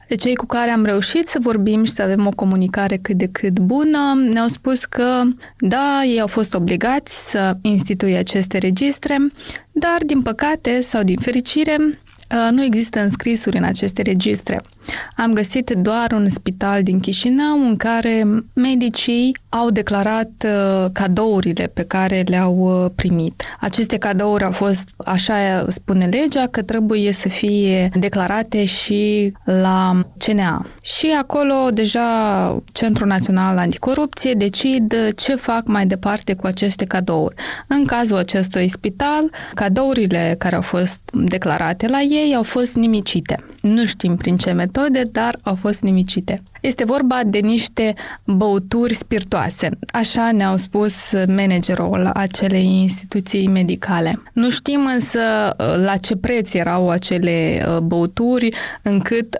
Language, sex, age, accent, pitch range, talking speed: Romanian, female, 20-39, native, 190-240 Hz, 135 wpm